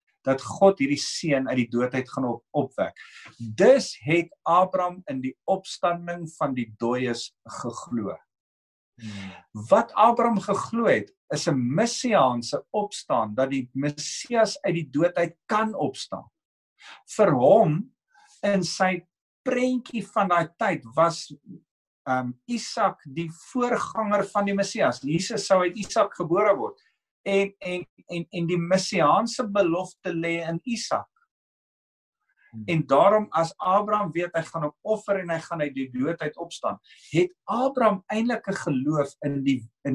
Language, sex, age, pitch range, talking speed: English, male, 50-69, 135-205 Hz, 135 wpm